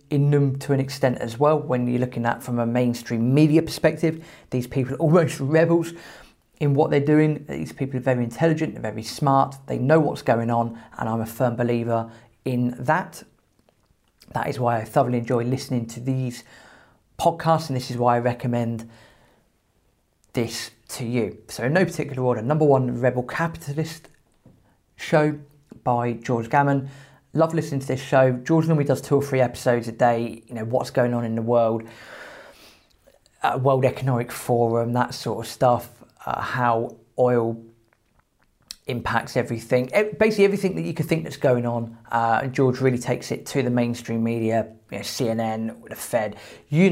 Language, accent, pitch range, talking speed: English, British, 120-145 Hz, 180 wpm